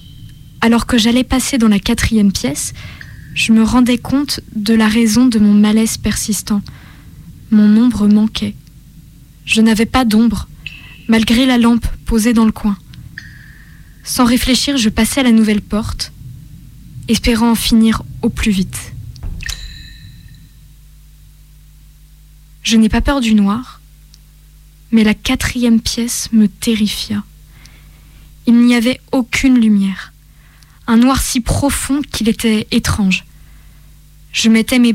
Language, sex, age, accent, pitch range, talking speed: French, female, 20-39, French, 165-235 Hz, 125 wpm